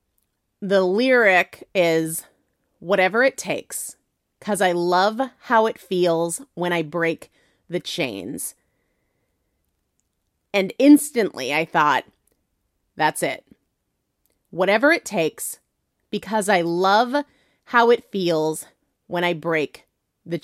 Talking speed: 105 wpm